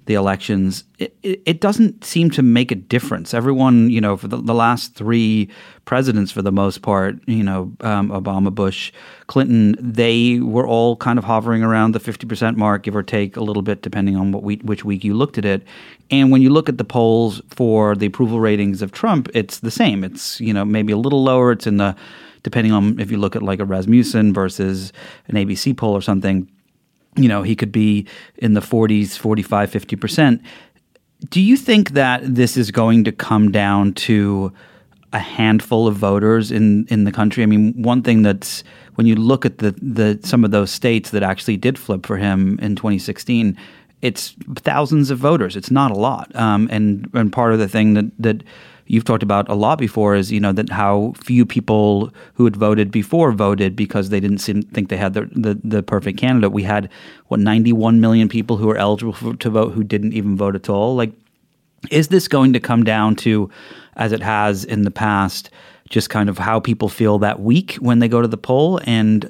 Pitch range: 100-120 Hz